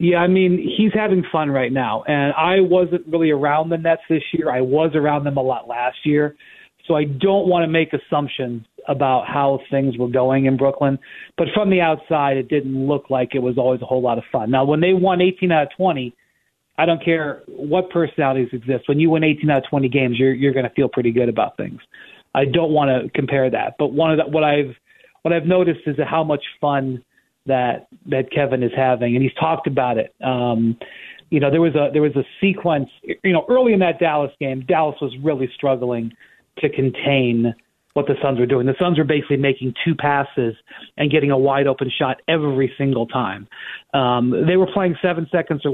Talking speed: 215 wpm